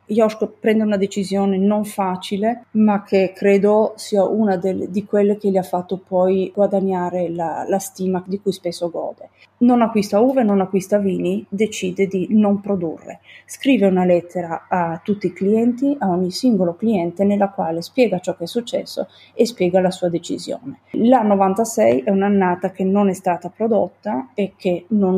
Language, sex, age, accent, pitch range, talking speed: Italian, female, 30-49, native, 185-220 Hz, 170 wpm